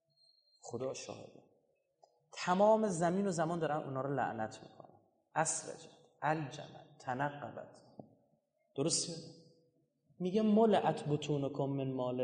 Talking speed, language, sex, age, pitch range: 110 wpm, Persian, male, 30-49, 125-185 Hz